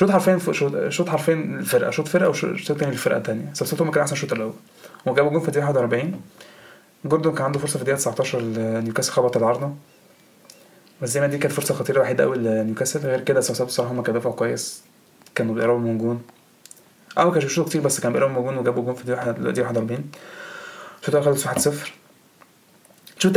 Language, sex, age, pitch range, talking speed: Arabic, male, 20-39, 120-145 Hz, 185 wpm